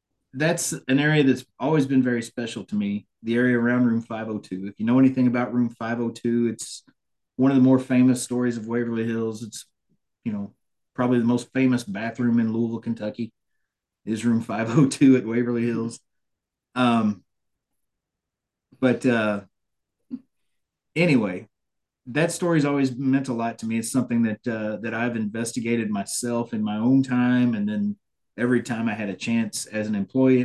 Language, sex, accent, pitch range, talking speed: English, male, American, 115-135 Hz, 165 wpm